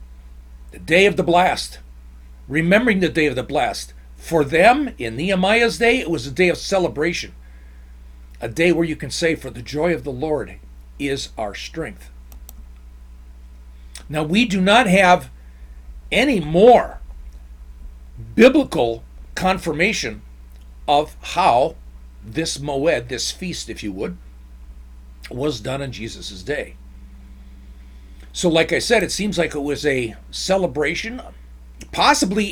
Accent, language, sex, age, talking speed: American, English, male, 50-69, 130 wpm